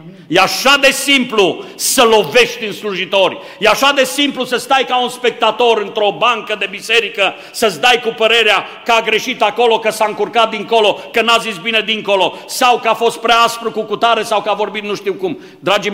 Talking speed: 205 wpm